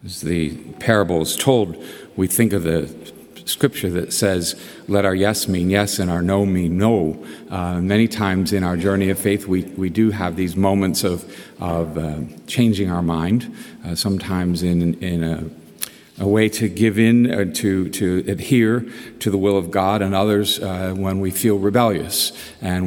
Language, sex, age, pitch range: English, male, 50-69, 85-105 Hz